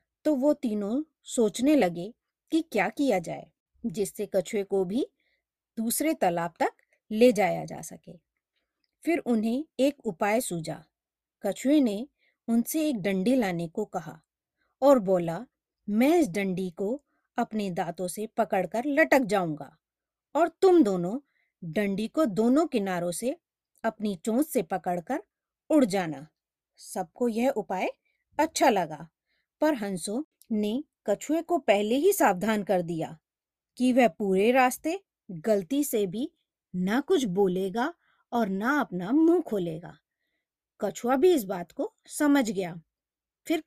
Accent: native